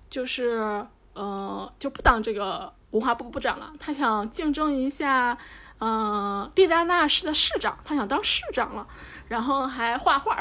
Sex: female